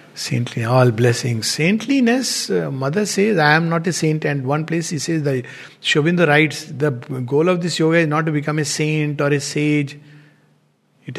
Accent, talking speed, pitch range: Indian, 180 wpm, 150-205 Hz